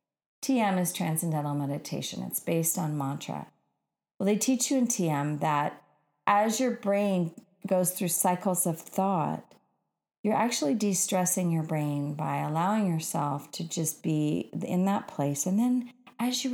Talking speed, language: 150 wpm, English